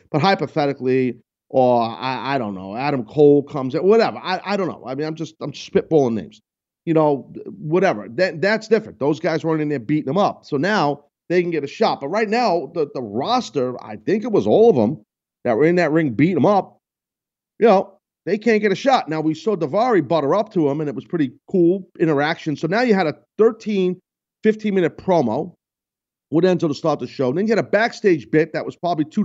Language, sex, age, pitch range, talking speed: English, male, 40-59, 155-215 Hz, 230 wpm